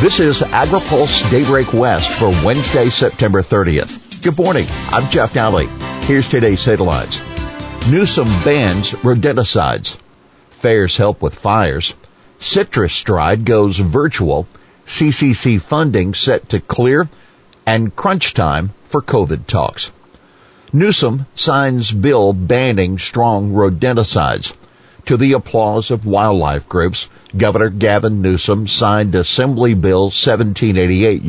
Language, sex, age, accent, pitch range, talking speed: English, male, 50-69, American, 95-120 Hz, 110 wpm